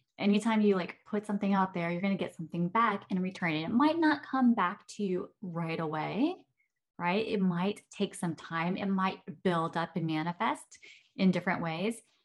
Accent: American